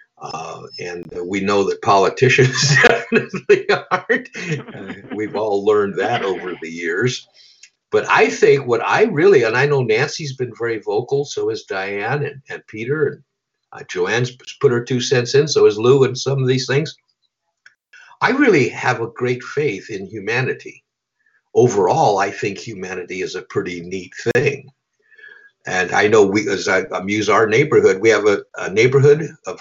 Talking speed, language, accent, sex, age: 170 wpm, English, American, male, 60-79